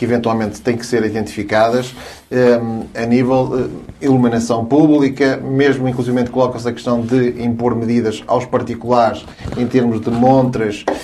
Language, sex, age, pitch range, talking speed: Portuguese, male, 30-49, 115-135 Hz, 145 wpm